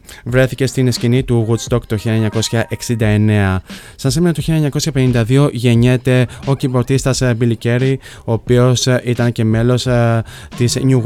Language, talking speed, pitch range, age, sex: Greek, 125 wpm, 110-125 Hz, 20-39, male